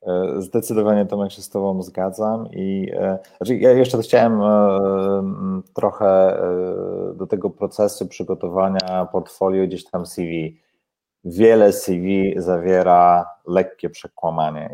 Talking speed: 100 wpm